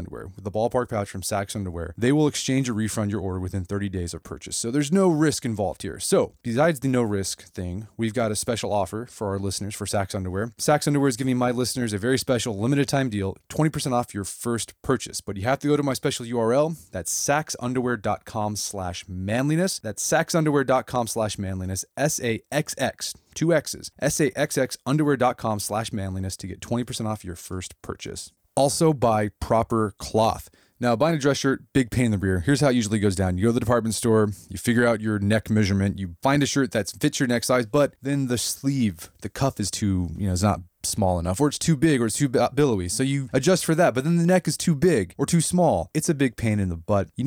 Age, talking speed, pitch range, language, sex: 20-39, 220 wpm, 100-135 Hz, English, male